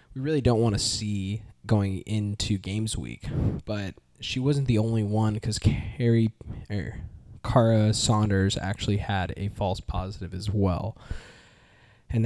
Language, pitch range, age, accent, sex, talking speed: English, 95-110 Hz, 10-29, American, male, 125 wpm